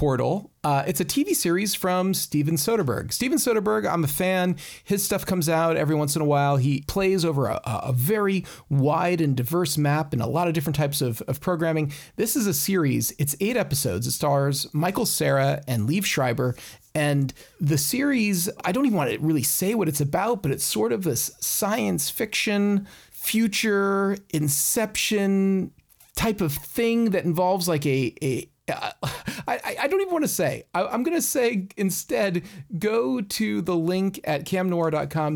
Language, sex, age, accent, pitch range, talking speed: English, male, 40-59, American, 145-195 Hz, 175 wpm